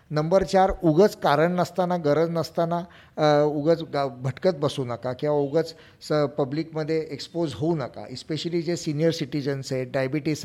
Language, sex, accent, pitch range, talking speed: Marathi, male, native, 145-175 Hz, 145 wpm